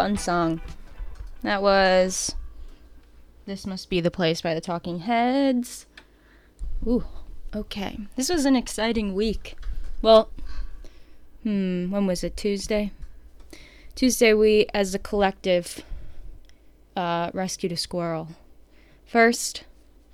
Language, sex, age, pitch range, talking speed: English, female, 10-29, 170-220 Hz, 105 wpm